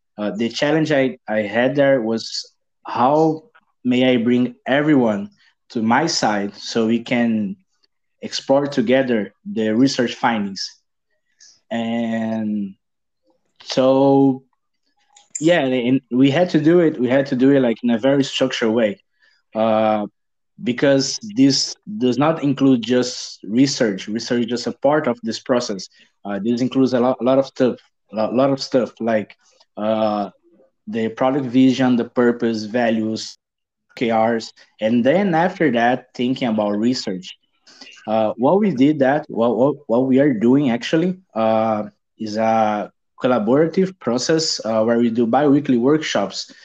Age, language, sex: 20-39, English, male